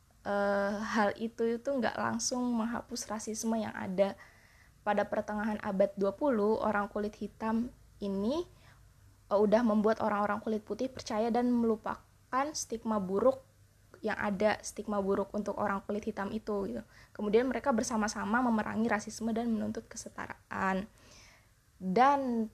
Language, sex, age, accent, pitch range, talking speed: Indonesian, female, 20-39, native, 190-225 Hz, 130 wpm